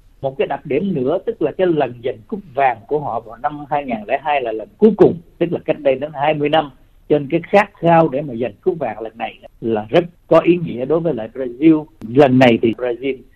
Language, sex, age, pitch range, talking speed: Vietnamese, male, 60-79, 120-170 Hz, 235 wpm